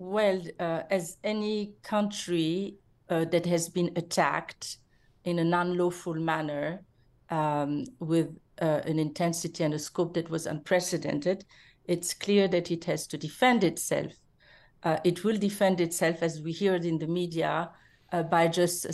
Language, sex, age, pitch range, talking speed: English, female, 50-69, 160-180 Hz, 150 wpm